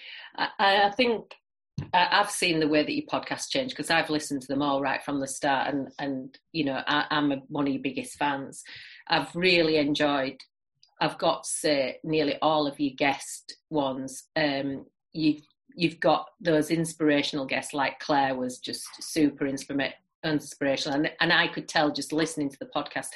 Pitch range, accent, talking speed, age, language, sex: 145-180 Hz, British, 175 wpm, 30-49, English, female